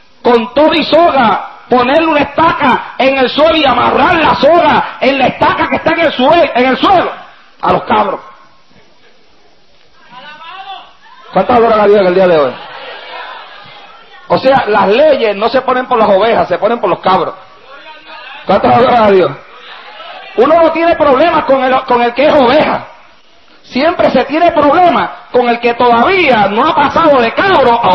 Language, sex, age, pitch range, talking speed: English, male, 40-59, 265-380 Hz, 175 wpm